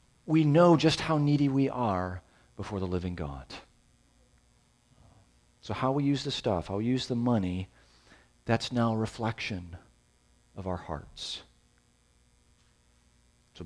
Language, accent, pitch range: English, American, 75-115 Hz